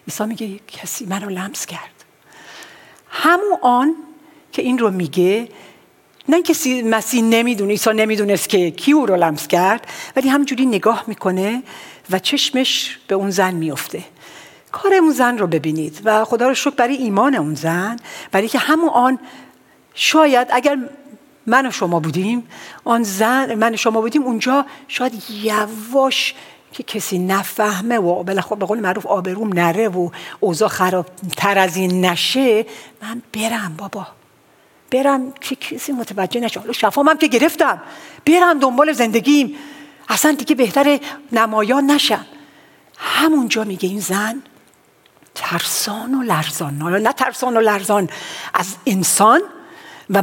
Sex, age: female, 60-79